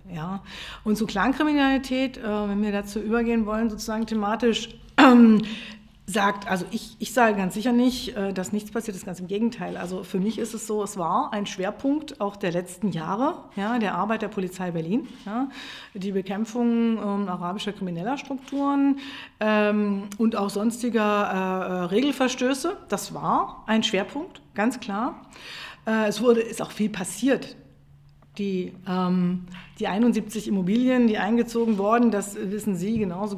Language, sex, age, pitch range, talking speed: German, female, 50-69, 195-235 Hz, 160 wpm